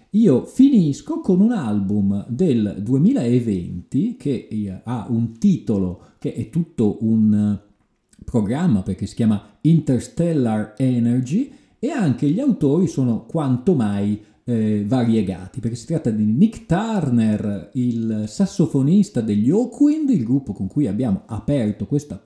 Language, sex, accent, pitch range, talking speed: Italian, male, native, 105-170 Hz, 125 wpm